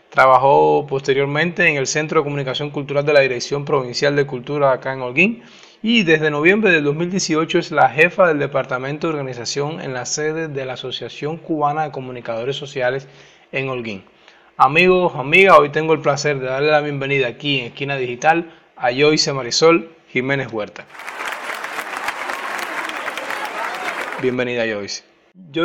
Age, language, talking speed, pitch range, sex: 20-39, Spanish, 145 wpm, 130-155 Hz, male